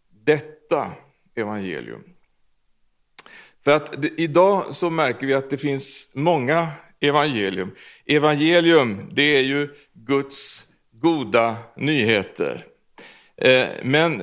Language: Swedish